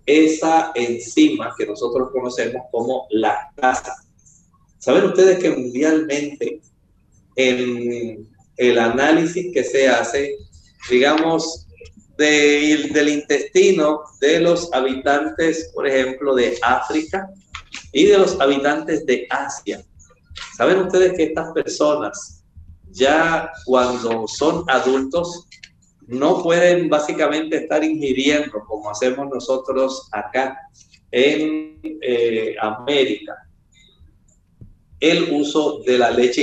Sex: male